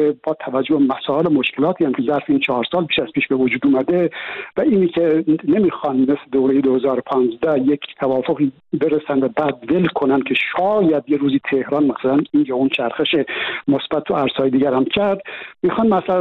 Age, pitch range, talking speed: 60-79, 135-205 Hz, 175 wpm